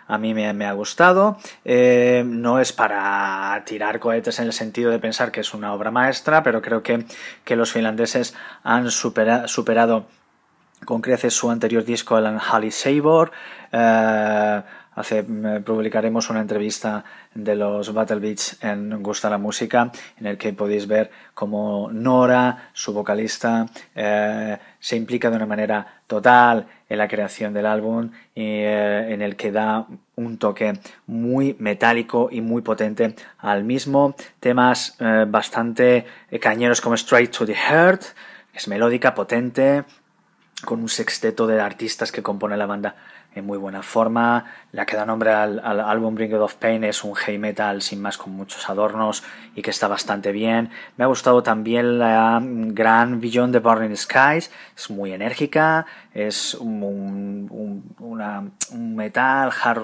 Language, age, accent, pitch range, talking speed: Spanish, 20-39, Spanish, 105-120 Hz, 155 wpm